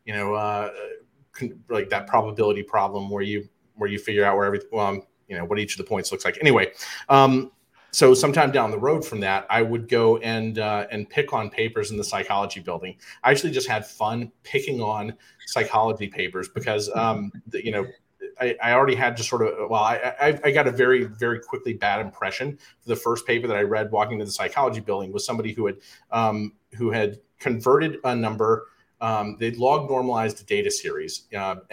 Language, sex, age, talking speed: English, male, 30-49, 205 wpm